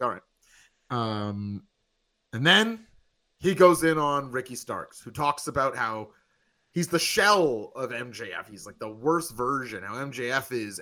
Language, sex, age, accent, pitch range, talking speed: English, male, 30-49, American, 110-155 Hz, 155 wpm